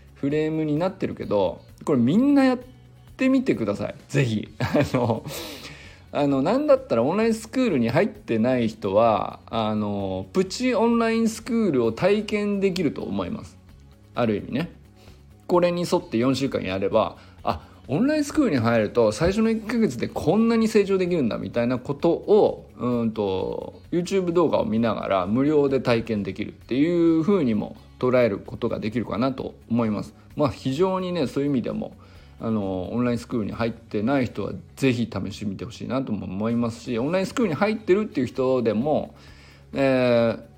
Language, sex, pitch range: Japanese, male, 110-185 Hz